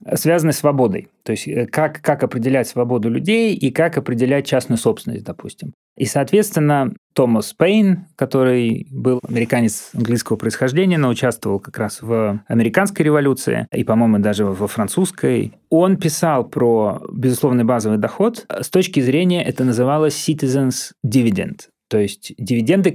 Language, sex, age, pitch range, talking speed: Russian, male, 30-49, 115-145 Hz, 140 wpm